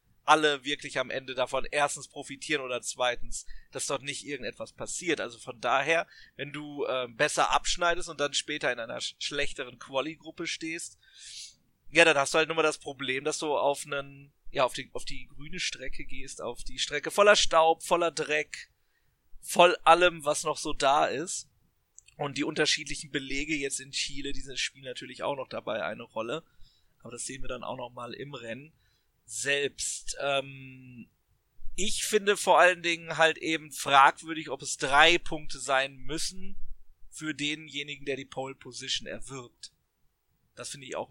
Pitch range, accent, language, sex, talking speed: 130-160 Hz, German, German, male, 170 wpm